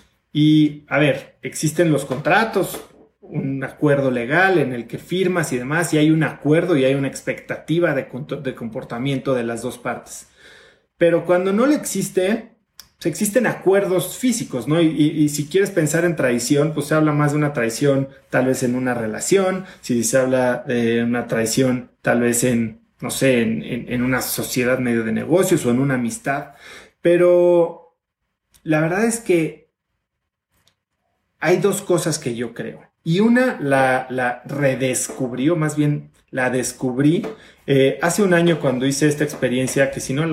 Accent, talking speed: Mexican, 170 wpm